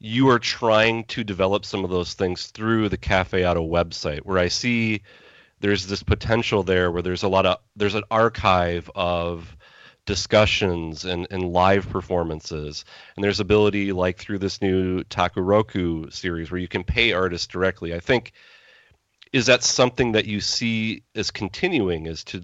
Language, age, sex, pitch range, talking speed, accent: English, 30-49, male, 90-110 Hz, 165 wpm, American